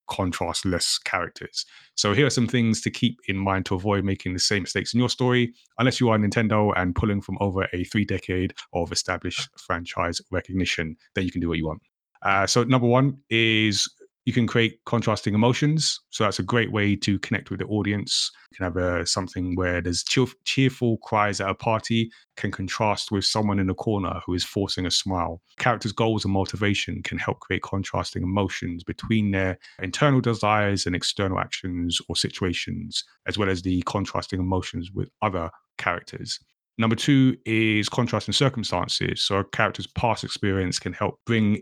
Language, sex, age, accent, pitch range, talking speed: English, male, 30-49, British, 95-110 Hz, 185 wpm